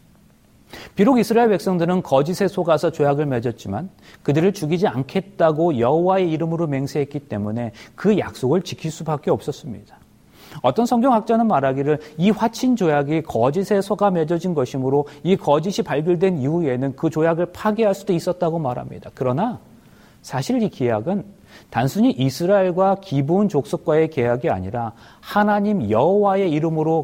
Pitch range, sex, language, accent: 125-180 Hz, male, Korean, native